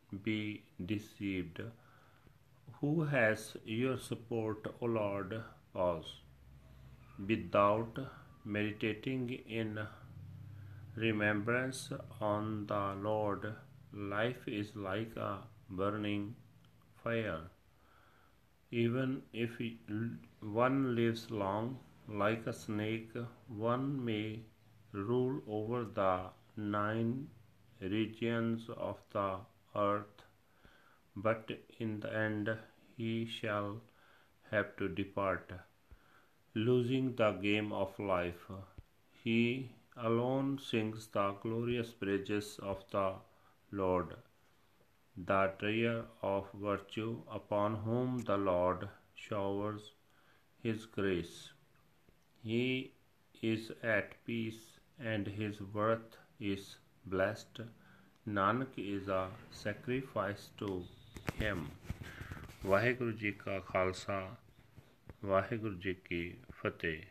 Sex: male